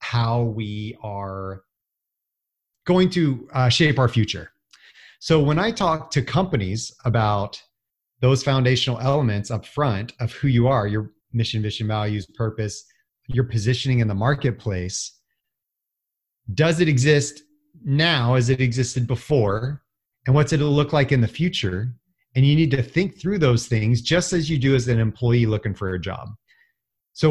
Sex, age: male, 30-49